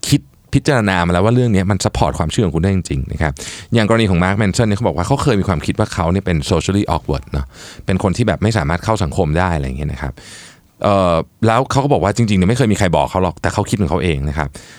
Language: Thai